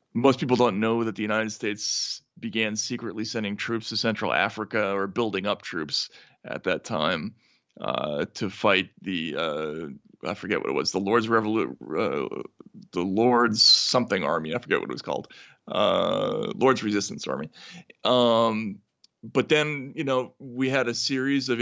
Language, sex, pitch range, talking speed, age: English, male, 105-125 Hz, 165 wpm, 40-59